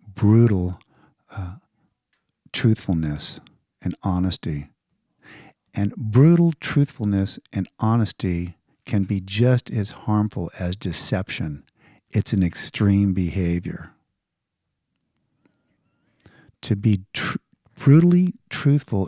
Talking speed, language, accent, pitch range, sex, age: 80 wpm, English, American, 85-110 Hz, male, 50-69